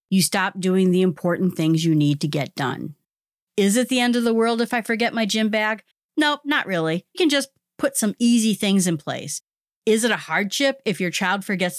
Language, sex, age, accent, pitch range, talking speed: English, female, 40-59, American, 175-240 Hz, 225 wpm